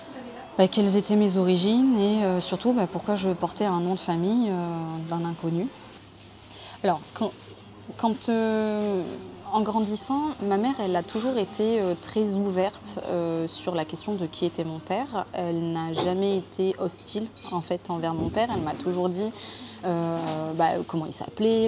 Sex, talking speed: female, 170 wpm